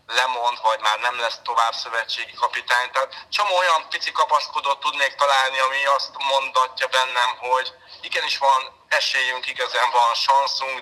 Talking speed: 145 wpm